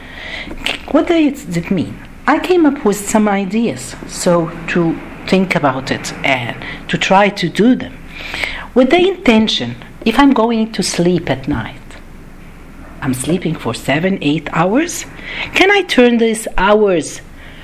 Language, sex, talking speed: Arabic, female, 145 wpm